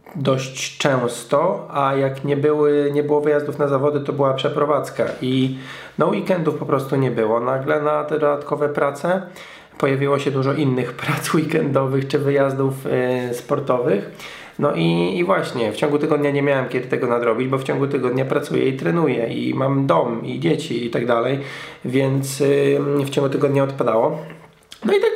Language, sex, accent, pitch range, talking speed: Polish, male, native, 120-145 Hz, 170 wpm